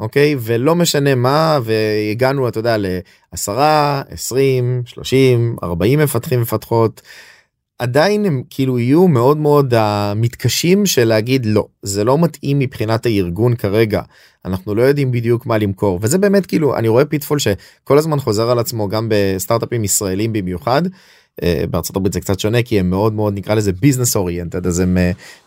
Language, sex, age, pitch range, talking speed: Hebrew, male, 30-49, 105-135 Hz, 160 wpm